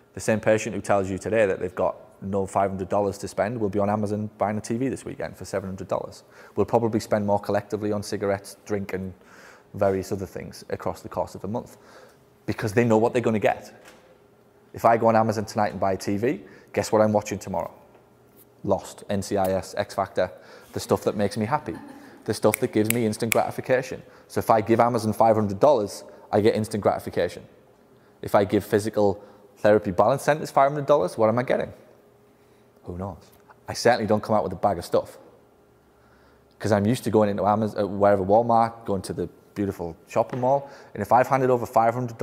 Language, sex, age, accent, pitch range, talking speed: English, male, 20-39, British, 100-120 Hz, 195 wpm